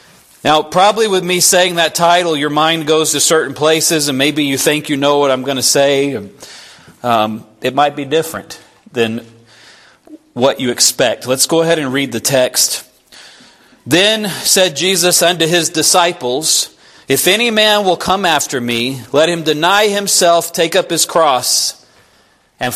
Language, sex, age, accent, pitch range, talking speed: English, male, 40-59, American, 150-210 Hz, 165 wpm